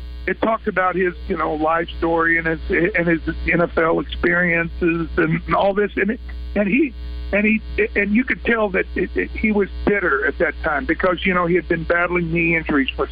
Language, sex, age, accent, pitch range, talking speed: English, male, 50-69, American, 140-210 Hz, 210 wpm